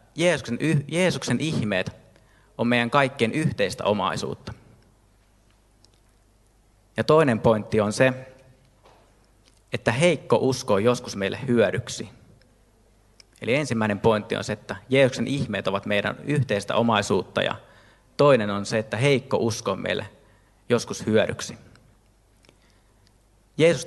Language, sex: Finnish, male